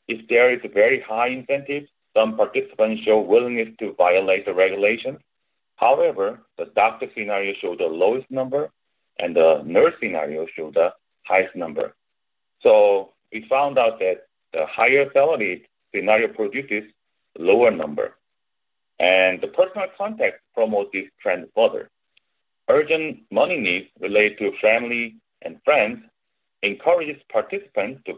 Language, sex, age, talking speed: English, male, 40-59, 130 wpm